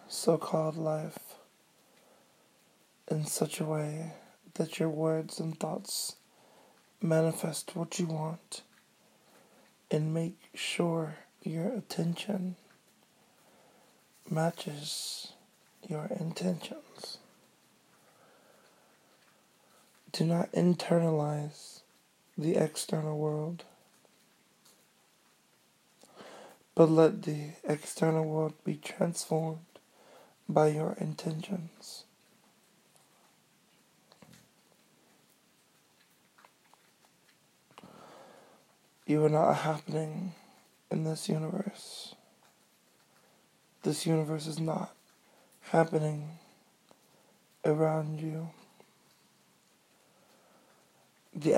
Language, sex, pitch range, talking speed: English, male, 155-175 Hz, 65 wpm